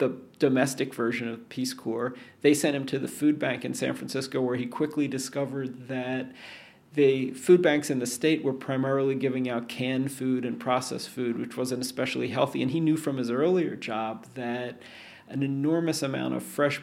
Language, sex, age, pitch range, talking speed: English, male, 40-59, 125-145 Hz, 190 wpm